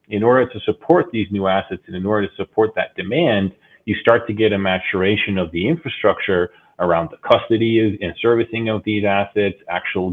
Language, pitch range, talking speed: English, 95-115 Hz, 190 wpm